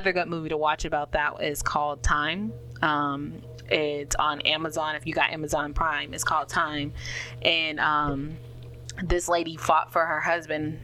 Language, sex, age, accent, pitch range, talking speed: English, female, 20-39, American, 145-165 Hz, 160 wpm